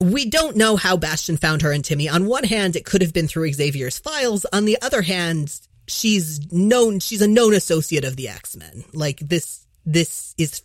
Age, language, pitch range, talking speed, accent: 30-49, English, 135-185 Hz, 205 wpm, American